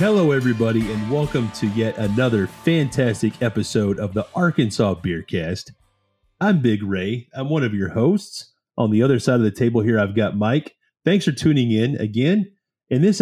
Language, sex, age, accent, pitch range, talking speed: English, male, 30-49, American, 105-135 Hz, 175 wpm